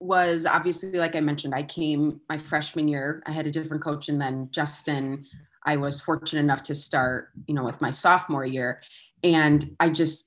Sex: female